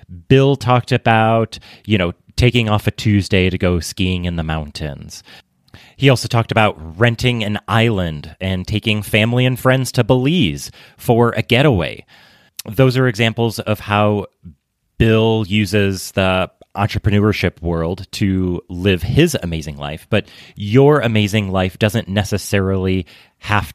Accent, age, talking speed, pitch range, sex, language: American, 30-49, 135 wpm, 90-115 Hz, male, English